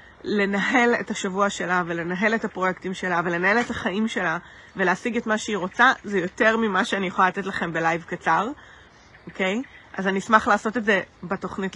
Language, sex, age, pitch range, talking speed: Hebrew, female, 30-49, 190-230 Hz, 180 wpm